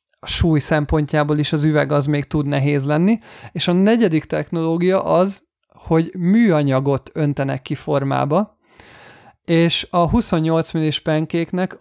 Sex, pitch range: male, 145-175 Hz